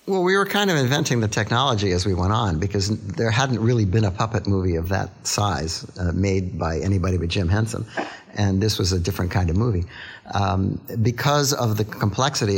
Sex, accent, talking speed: male, American, 205 wpm